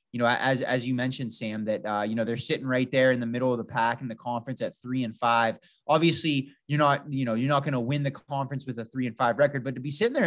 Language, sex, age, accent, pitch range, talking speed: English, male, 20-39, American, 120-145 Hz, 300 wpm